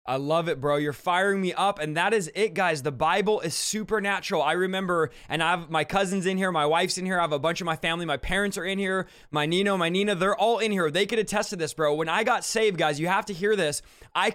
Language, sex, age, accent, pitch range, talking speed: English, male, 20-39, American, 180-220 Hz, 280 wpm